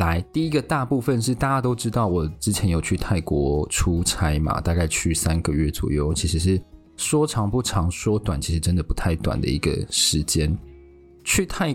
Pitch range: 85-115 Hz